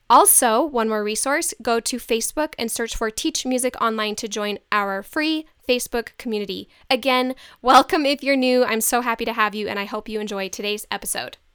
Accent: American